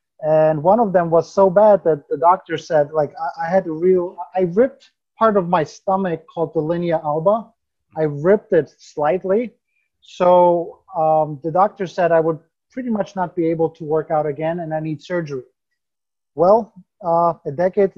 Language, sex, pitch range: English, male, 155-185 Hz